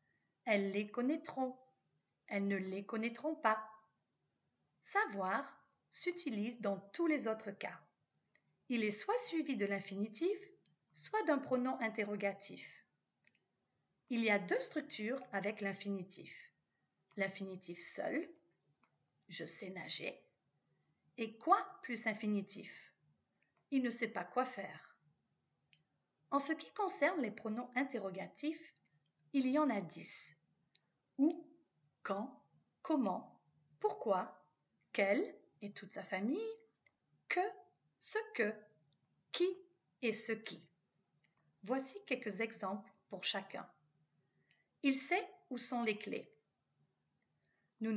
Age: 40-59